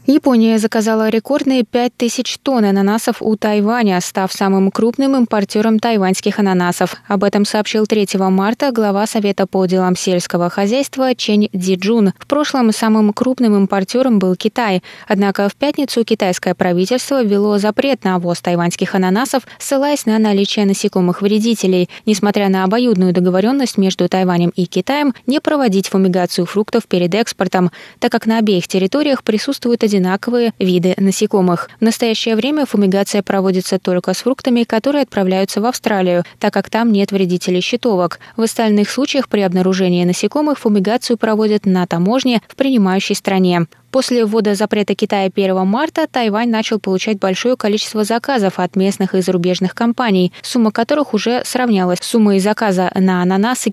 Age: 20-39